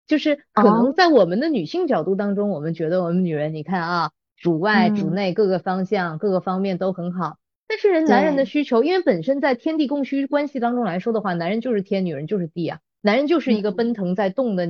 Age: 20-39